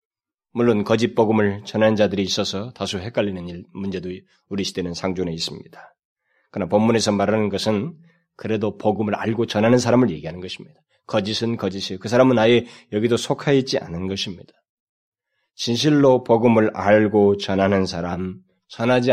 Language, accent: Korean, native